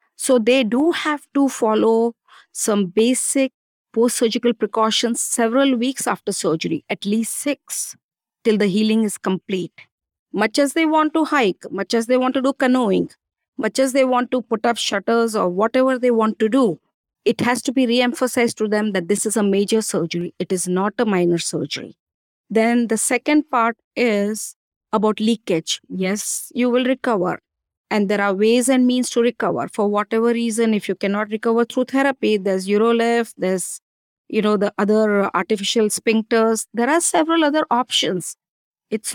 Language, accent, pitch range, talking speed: English, Indian, 205-250 Hz, 170 wpm